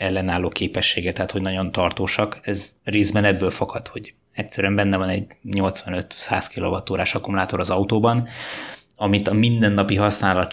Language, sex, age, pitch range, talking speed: Hungarian, male, 20-39, 95-110 Hz, 135 wpm